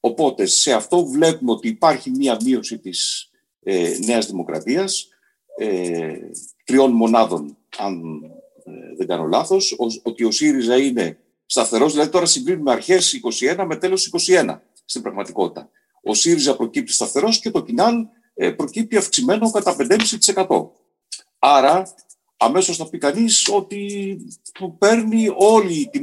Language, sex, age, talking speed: Greek, male, 50-69, 125 wpm